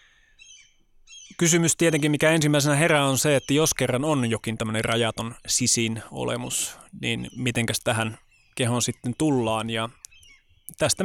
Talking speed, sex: 130 wpm, male